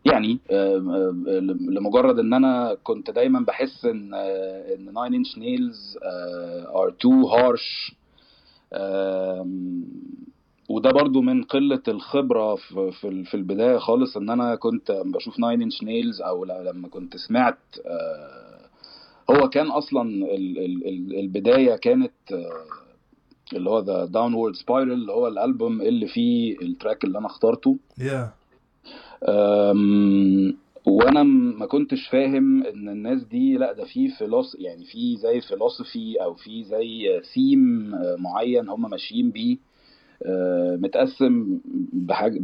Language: Arabic